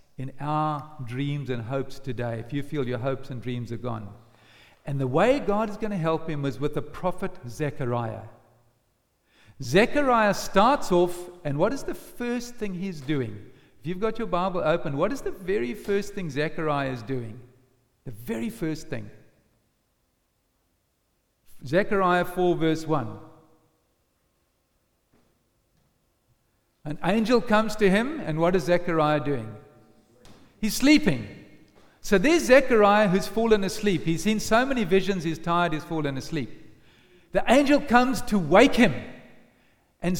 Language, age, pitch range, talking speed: English, 50-69, 130-200 Hz, 145 wpm